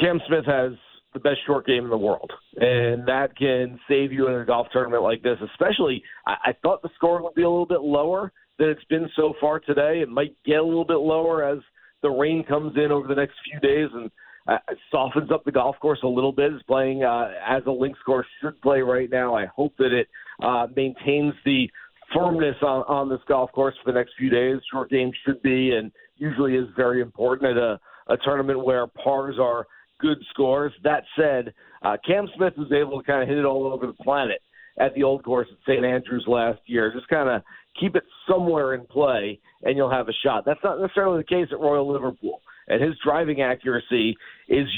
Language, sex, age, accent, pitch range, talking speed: English, male, 50-69, American, 125-150 Hz, 220 wpm